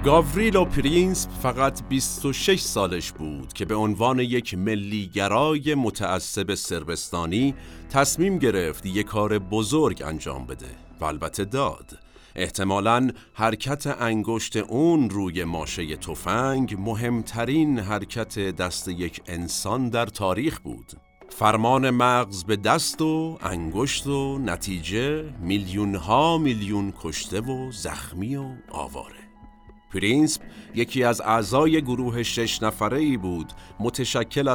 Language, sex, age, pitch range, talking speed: Persian, male, 50-69, 95-130 Hz, 110 wpm